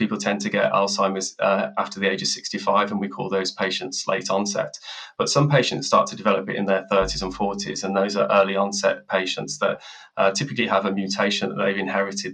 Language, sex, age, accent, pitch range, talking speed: English, male, 20-39, British, 100-110 Hz, 220 wpm